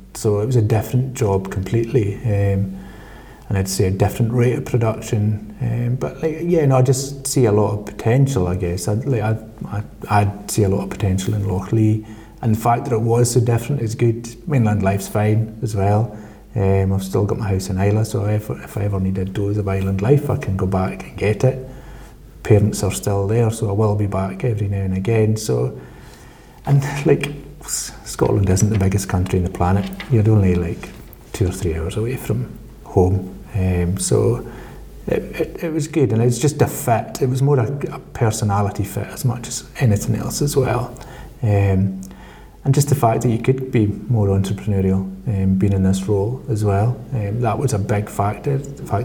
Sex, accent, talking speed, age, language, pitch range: male, British, 205 wpm, 30-49, English, 100-125 Hz